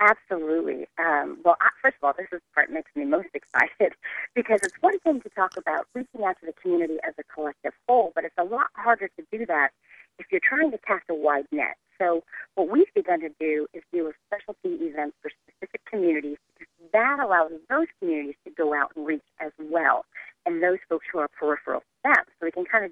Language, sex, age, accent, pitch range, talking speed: English, female, 40-59, American, 160-240 Hz, 225 wpm